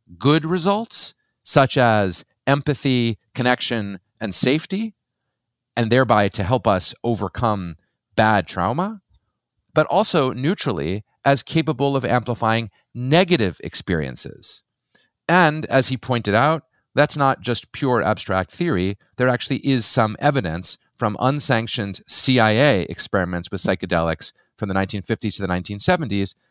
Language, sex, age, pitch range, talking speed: English, male, 40-59, 100-135 Hz, 120 wpm